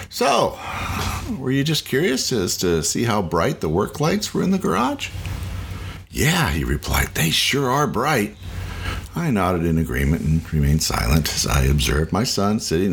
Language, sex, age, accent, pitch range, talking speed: English, male, 50-69, American, 80-100 Hz, 170 wpm